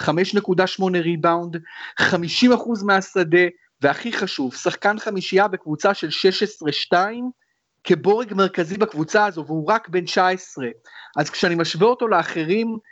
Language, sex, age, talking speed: Hebrew, male, 30-49, 135 wpm